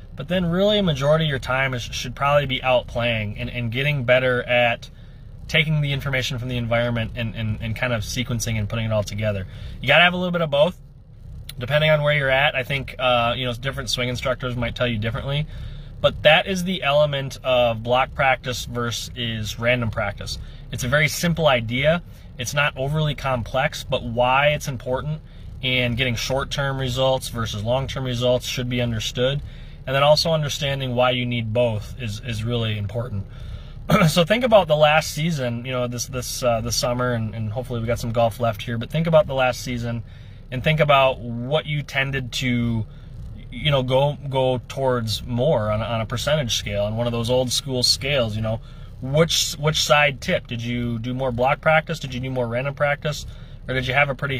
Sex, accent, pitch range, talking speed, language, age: male, American, 120-140 Hz, 205 wpm, English, 20-39